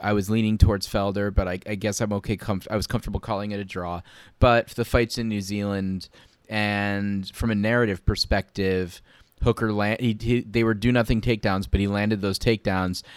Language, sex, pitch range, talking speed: English, male, 95-115 Hz, 180 wpm